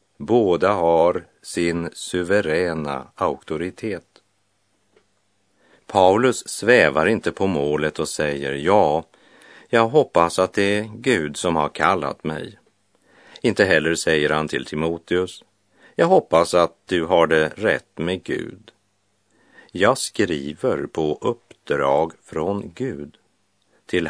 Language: Polish